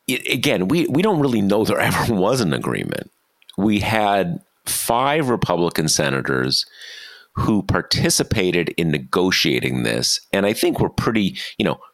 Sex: male